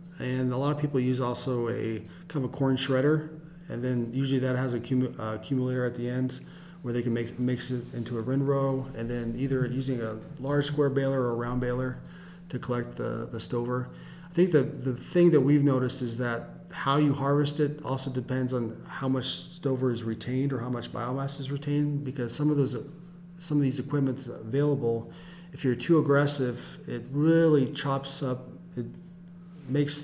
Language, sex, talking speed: English, male, 200 wpm